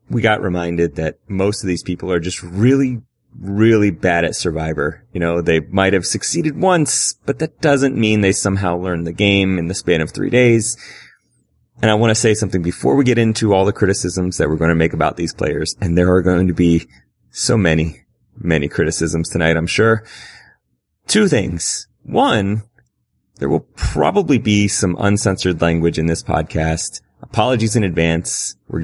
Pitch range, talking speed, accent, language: 85-115 Hz, 185 wpm, American, English